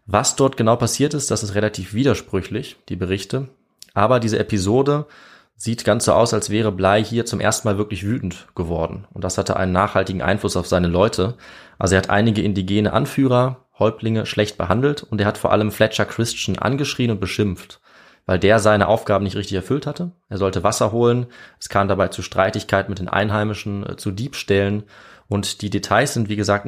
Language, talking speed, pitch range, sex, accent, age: German, 190 wpm, 95-115 Hz, male, German, 20-39